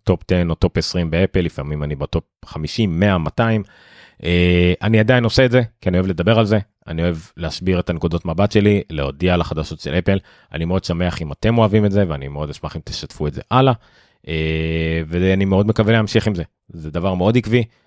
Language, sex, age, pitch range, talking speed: Hebrew, male, 30-49, 80-105 Hz, 210 wpm